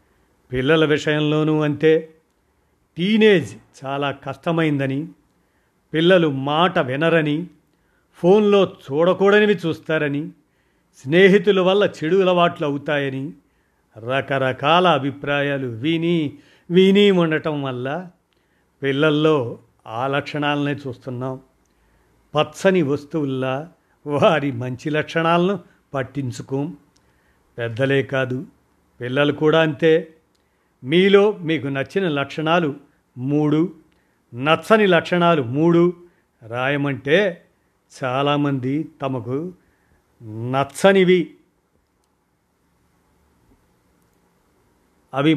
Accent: native